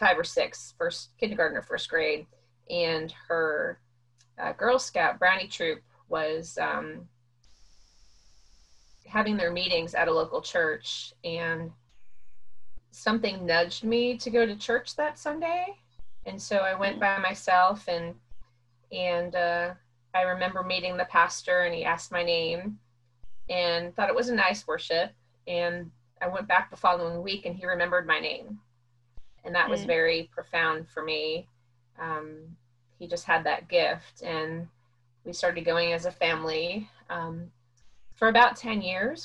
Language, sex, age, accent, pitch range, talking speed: English, female, 30-49, American, 150-185 Hz, 150 wpm